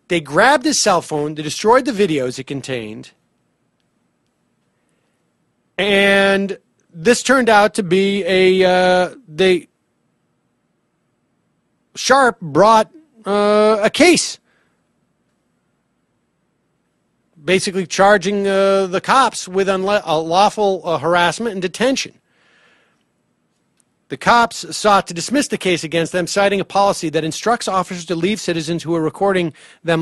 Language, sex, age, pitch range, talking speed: English, male, 40-59, 170-220 Hz, 120 wpm